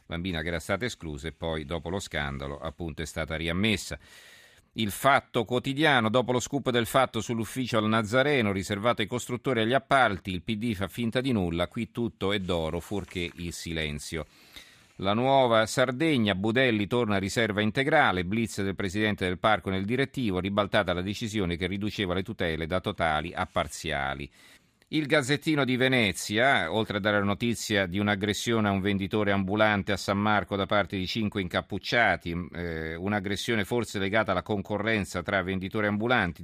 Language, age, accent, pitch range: Italian, 40-59, native, 95-115 Hz